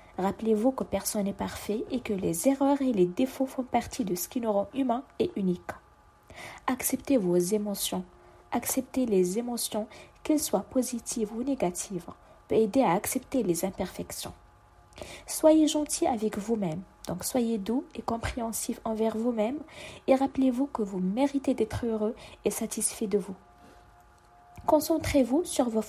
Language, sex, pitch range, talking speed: French, female, 205-265 Hz, 150 wpm